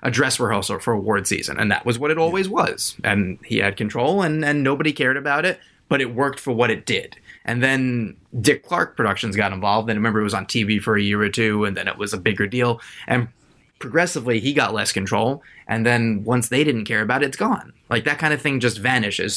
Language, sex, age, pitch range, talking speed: English, male, 20-39, 105-140 Hz, 240 wpm